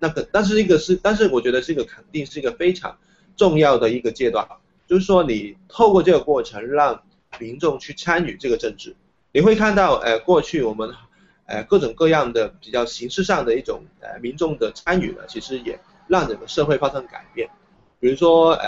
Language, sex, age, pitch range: Chinese, male, 20-39, 140-205 Hz